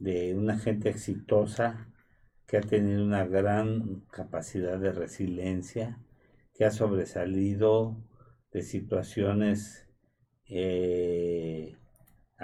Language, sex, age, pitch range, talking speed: Spanish, male, 50-69, 100-120 Hz, 85 wpm